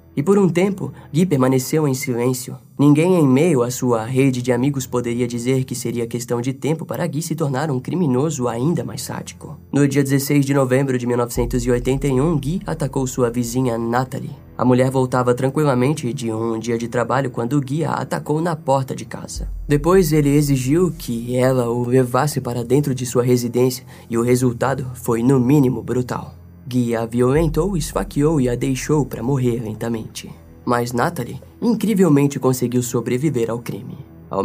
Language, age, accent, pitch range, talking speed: Portuguese, 10-29, Brazilian, 120-145 Hz, 170 wpm